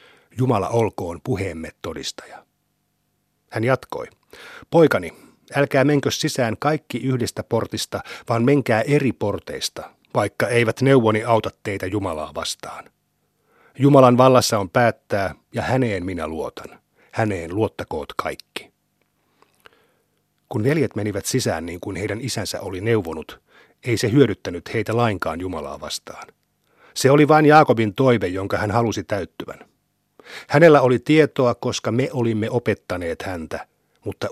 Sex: male